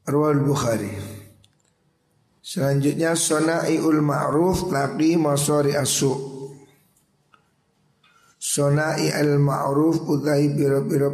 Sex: male